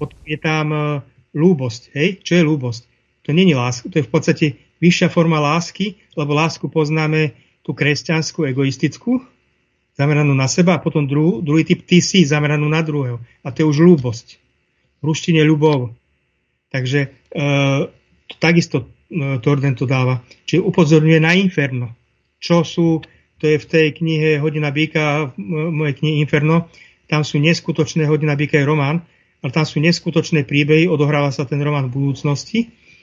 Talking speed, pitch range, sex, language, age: 155 wpm, 140-160 Hz, male, Czech, 30-49